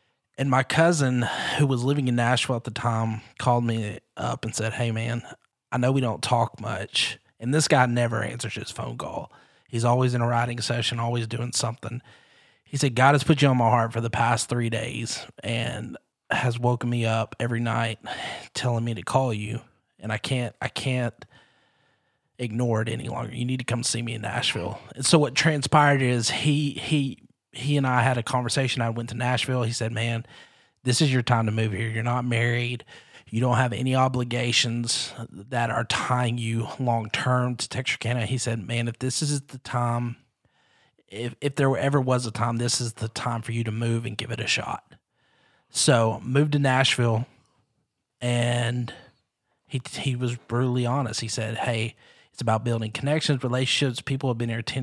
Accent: American